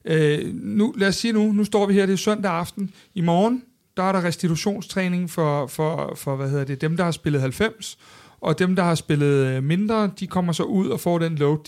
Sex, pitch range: male, 155-190 Hz